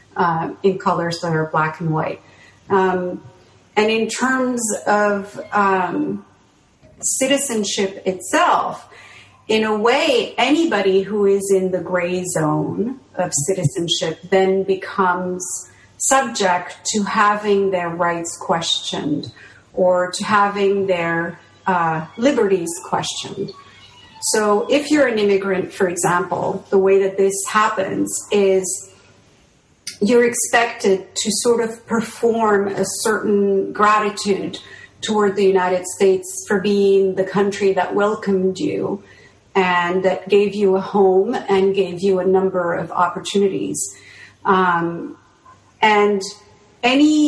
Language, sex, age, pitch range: English, female, 40-59, 180-215 Hz